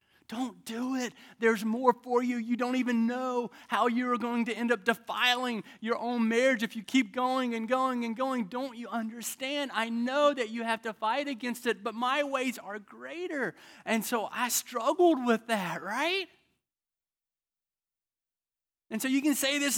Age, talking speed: 30-49, 180 wpm